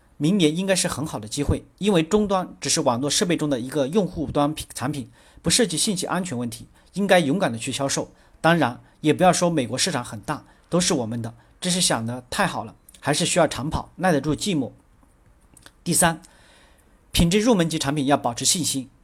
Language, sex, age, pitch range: Chinese, male, 40-59, 135-180 Hz